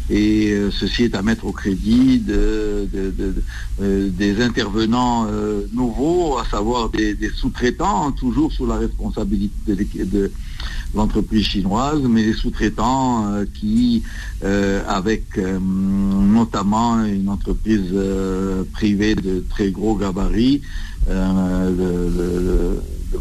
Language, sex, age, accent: French, male, 60-79, French